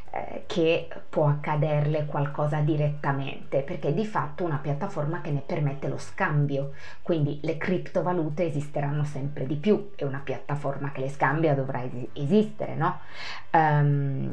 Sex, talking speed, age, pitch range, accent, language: female, 140 wpm, 20-39, 140-165 Hz, native, Italian